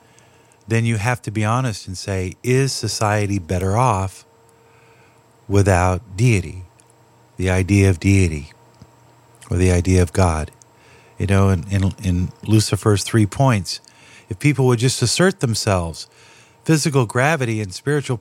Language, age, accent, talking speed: English, 50-69, American, 135 wpm